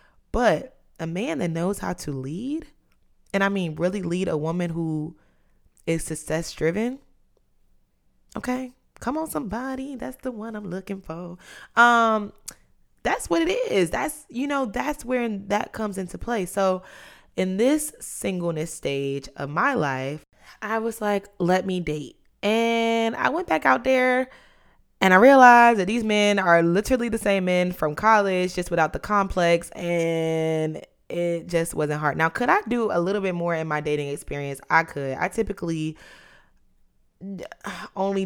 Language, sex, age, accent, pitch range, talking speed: English, female, 20-39, American, 160-220 Hz, 160 wpm